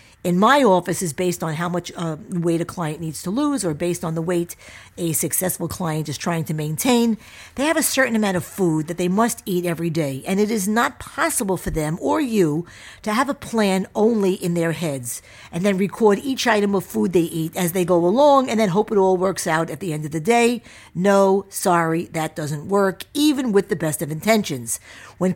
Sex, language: female, English